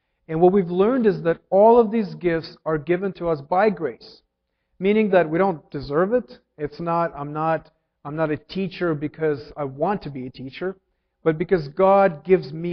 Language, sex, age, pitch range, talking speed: English, male, 40-59, 145-190 Hz, 200 wpm